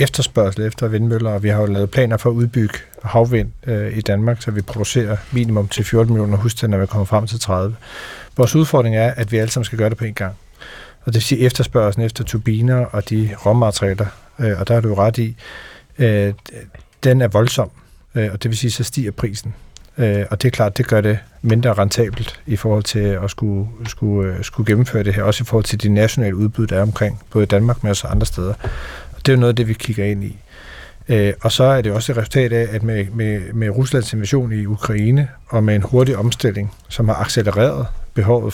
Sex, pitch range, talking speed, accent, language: male, 105-120 Hz, 225 wpm, native, Danish